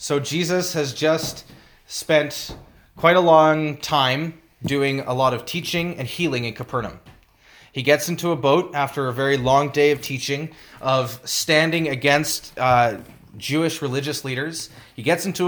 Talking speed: 155 wpm